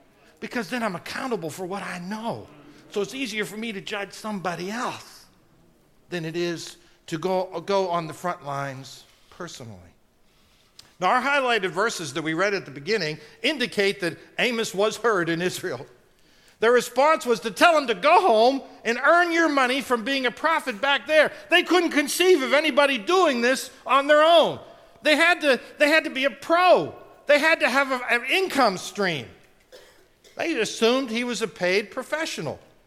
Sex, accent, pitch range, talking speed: male, American, 185-280 Hz, 175 wpm